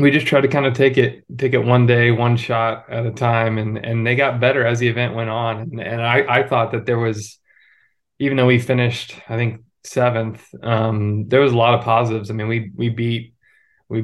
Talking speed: 235 wpm